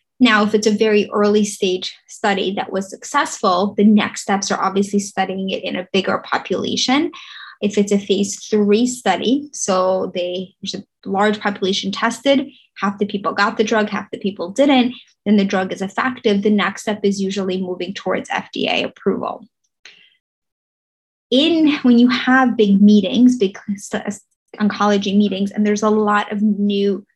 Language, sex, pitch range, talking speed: English, female, 195-220 Hz, 165 wpm